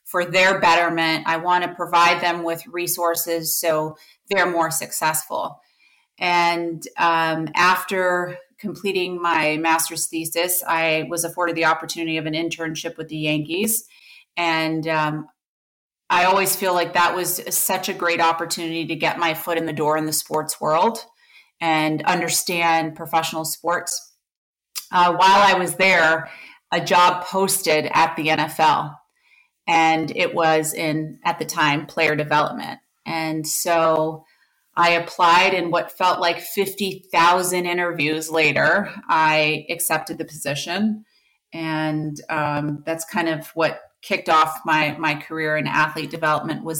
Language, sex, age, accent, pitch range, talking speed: English, female, 30-49, American, 155-175 Hz, 140 wpm